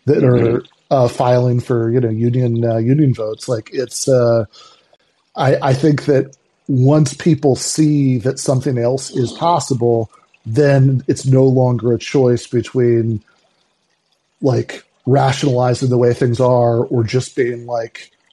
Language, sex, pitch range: English, male, 120-140 Hz